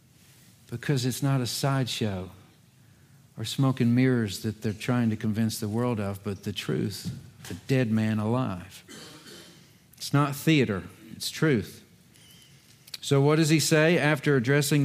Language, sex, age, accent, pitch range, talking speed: English, male, 50-69, American, 120-155 Hz, 145 wpm